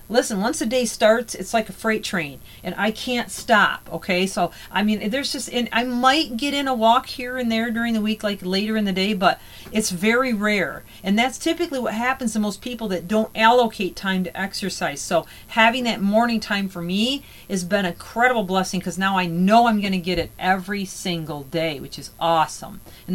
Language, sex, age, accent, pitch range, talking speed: English, female, 40-59, American, 180-235 Hz, 220 wpm